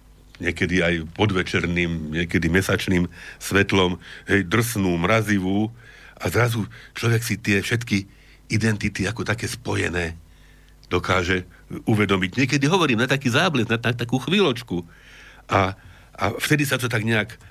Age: 60-79